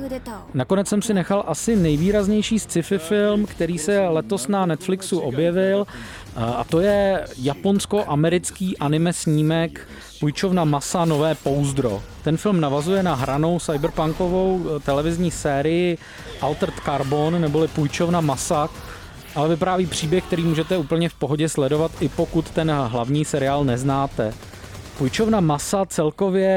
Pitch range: 145-180 Hz